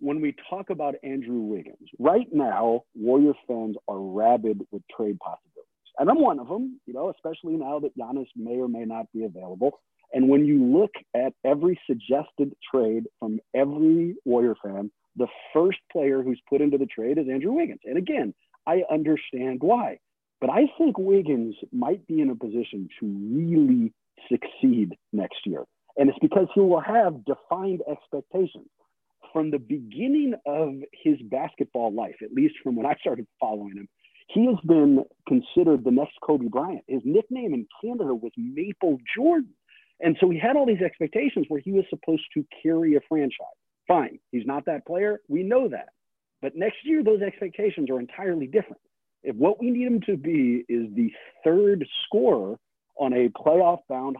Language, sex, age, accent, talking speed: English, male, 40-59, American, 175 wpm